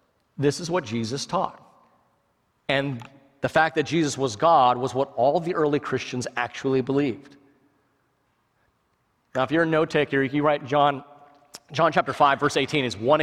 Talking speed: 165 wpm